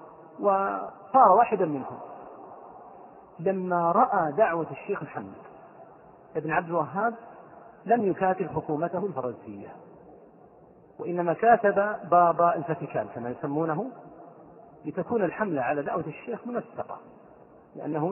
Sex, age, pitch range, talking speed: male, 40-59, 150-200 Hz, 95 wpm